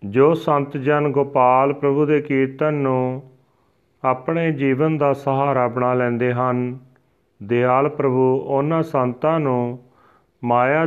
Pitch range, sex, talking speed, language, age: 125-145 Hz, male, 115 wpm, Punjabi, 40-59